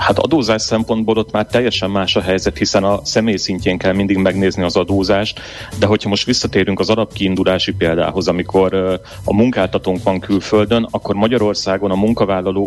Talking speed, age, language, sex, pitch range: 165 wpm, 30-49, Hungarian, male, 95-105 Hz